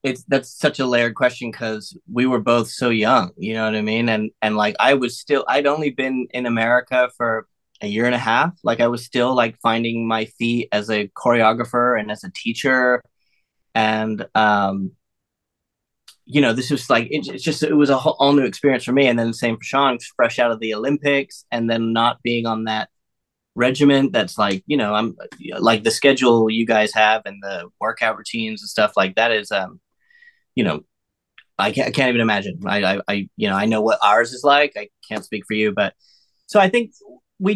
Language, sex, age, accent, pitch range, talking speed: English, male, 20-39, American, 115-140 Hz, 215 wpm